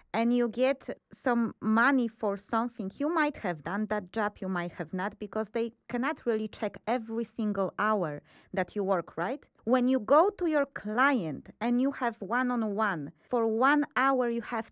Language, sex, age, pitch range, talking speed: English, female, 20-39, 195-250 Hz, 180 wpm